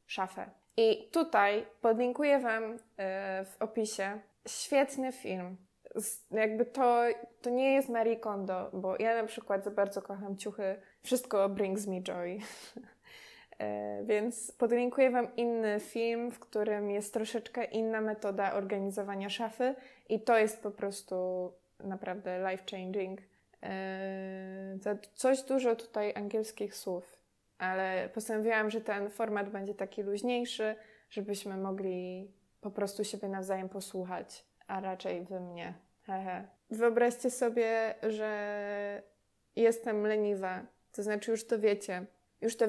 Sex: female